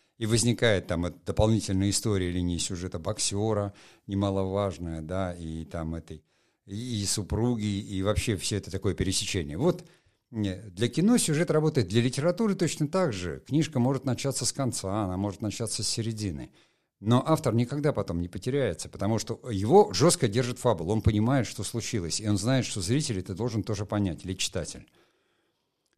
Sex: male